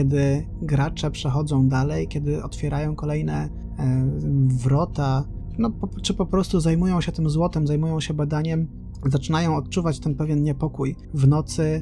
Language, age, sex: Polish, 20-39, male